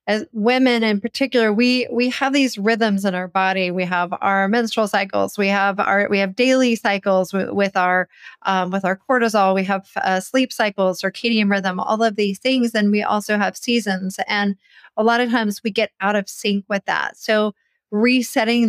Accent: American